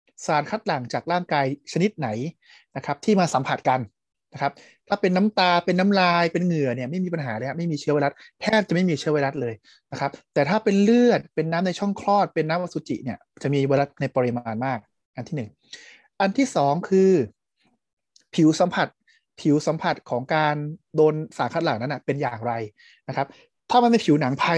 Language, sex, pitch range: Thai, male, 135-180 Hz